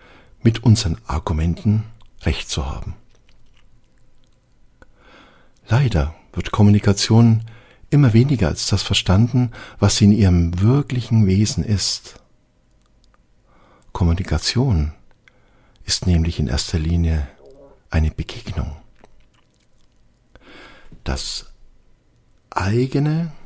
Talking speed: 80 wpm